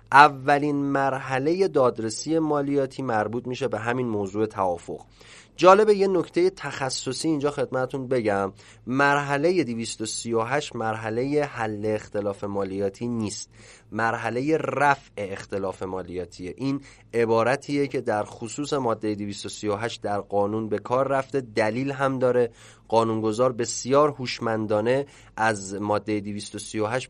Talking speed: 110 wpm